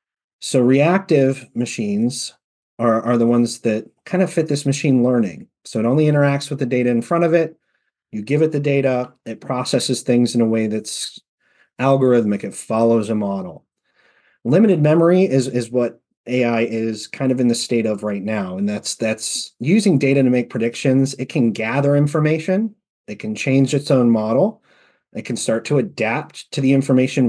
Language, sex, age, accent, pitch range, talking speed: English, male, 30-49, American, 115-150 Hz, 180 wpm